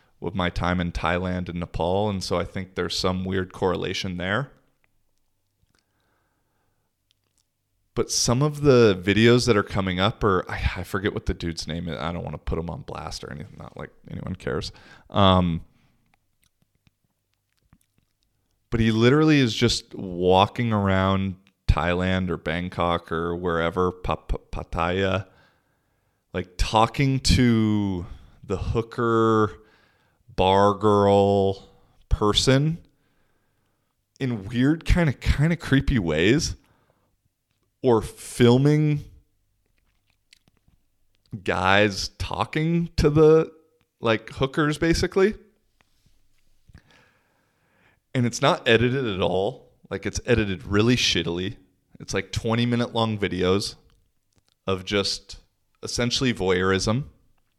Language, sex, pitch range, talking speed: English, male, 95-120 Hz, 110 wpm